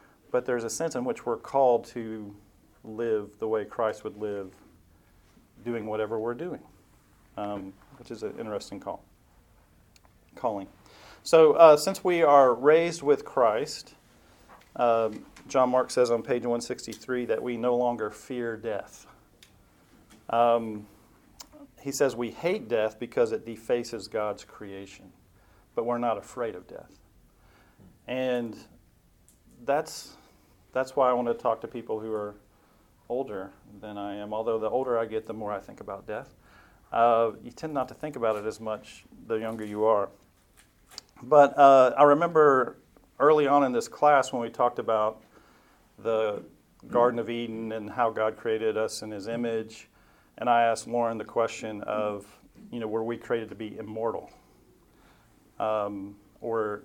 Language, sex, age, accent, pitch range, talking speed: English, male, 40-59, American, 110-125 Hz, 155 wpm